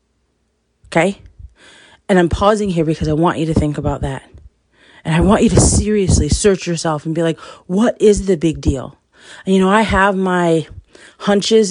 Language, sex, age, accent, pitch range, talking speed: English, female, 30-49, American, 155-195 Hz, 180 wpm